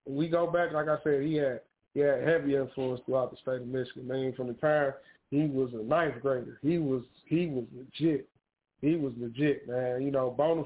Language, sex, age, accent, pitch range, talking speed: English, male, 20-39, American, 140-175 Hz, 220 wpm